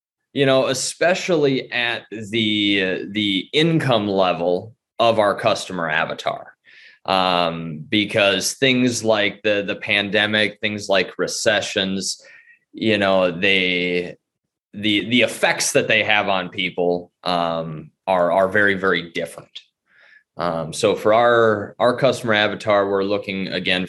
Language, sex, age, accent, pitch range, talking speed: English, male, 20-39, American, 95-115 Hz, 125 wpm